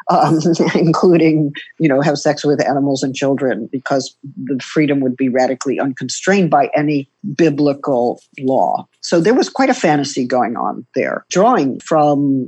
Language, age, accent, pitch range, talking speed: English, 50-69, American, 135-165 Hz, 155 wpm